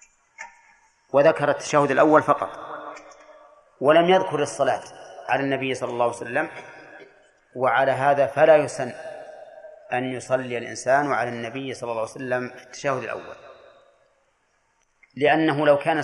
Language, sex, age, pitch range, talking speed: Arabic, male, 30-49, 130-160 Hz, 115 wpm